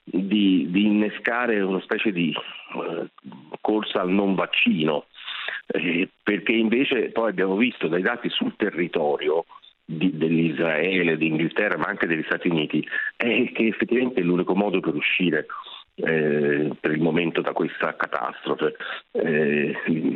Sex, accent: male, native